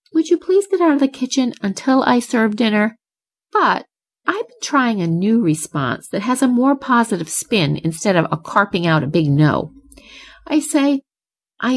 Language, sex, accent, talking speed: English, female, American, 185 wpm